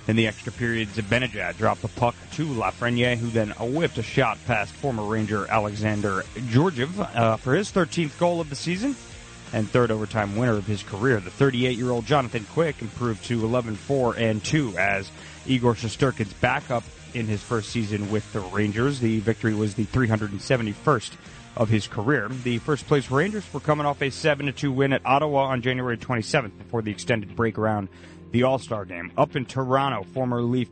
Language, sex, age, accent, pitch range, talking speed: English, male, 30-49, American, 105-130 Hz, 170 wpm